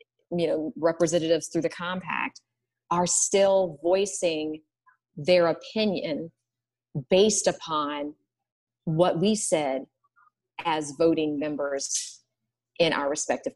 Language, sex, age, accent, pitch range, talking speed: English, female, 30-49, American, 160-210 Hz, 95 wpm